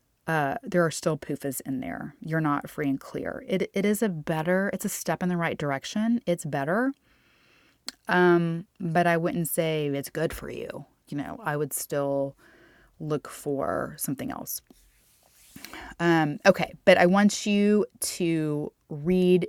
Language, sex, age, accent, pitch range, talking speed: English, female, 20-39, American, 150-190 Hz, 160 wpm